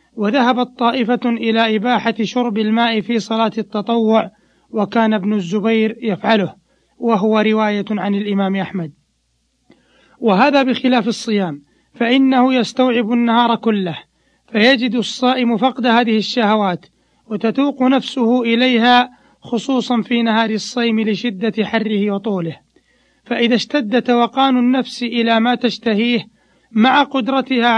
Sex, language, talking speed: male, Arabic, 105 wpm